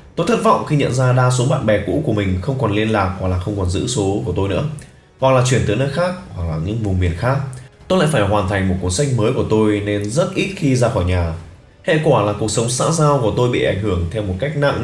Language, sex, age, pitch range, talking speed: Vietnamese, male, 20-39, 95-135 Hz, 290 wpm